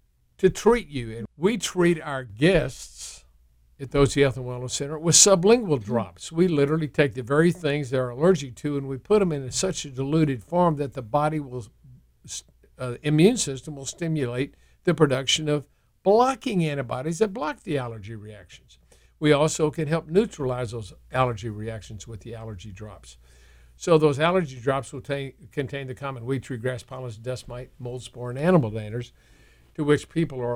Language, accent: English, American